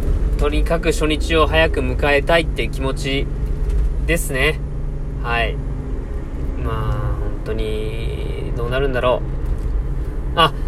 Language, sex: Japanese, male